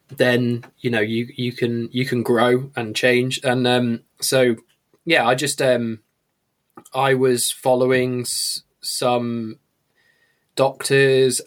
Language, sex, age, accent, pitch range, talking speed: English, male, 10-29, British, 115-130 Hz, 120 wpm